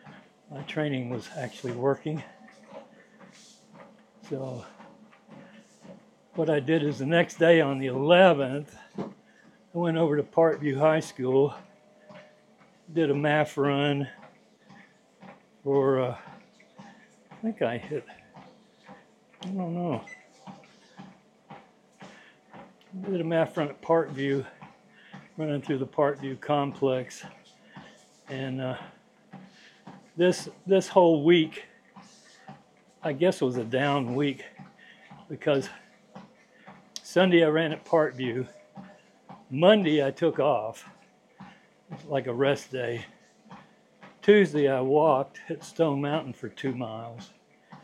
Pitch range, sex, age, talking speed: 140-195 Hz, male, 60-79, 105 wpm